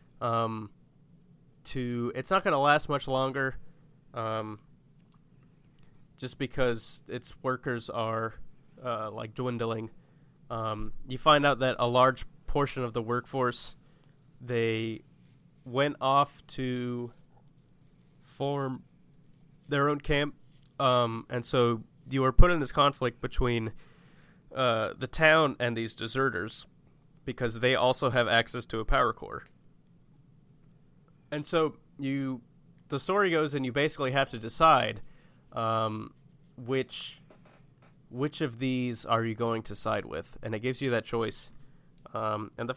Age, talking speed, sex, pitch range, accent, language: 20-39, 130 wpm, male, 120-155 Hz, American, English